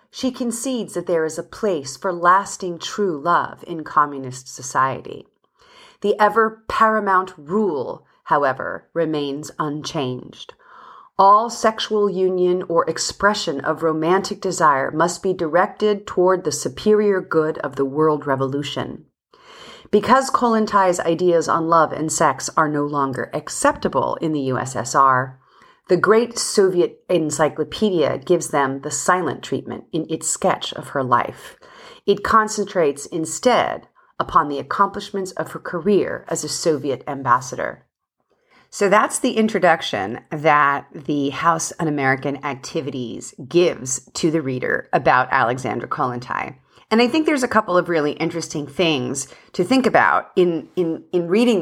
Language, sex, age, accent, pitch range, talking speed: English, female, 40-59, American, 145-210 Hz, 135 wpm